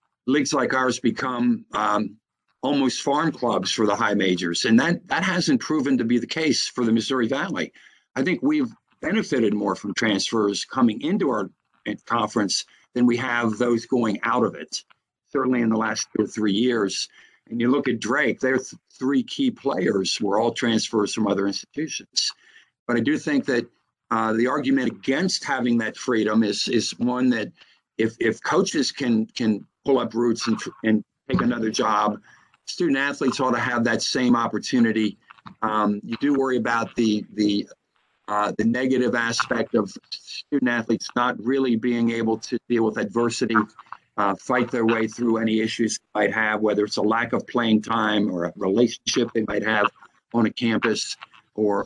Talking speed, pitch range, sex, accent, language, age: 180 wpm, 110-125 Hz, male, American, English, 50-69